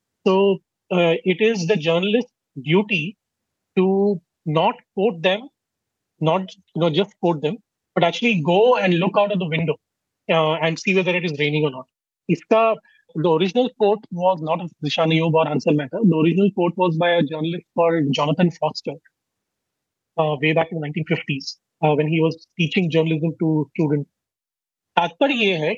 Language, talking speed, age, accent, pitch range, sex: Hindi, 45 wpm, 30-49, native, 165-210 Hz, male